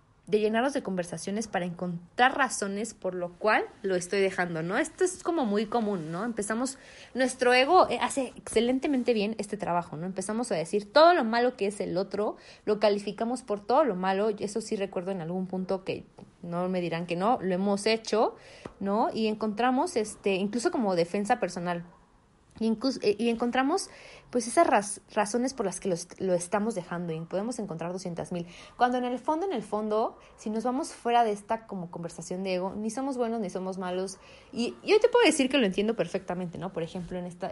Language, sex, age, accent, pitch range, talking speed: Spanish, female, 20-39, Mexican, 180-230 Hz, 200 wpm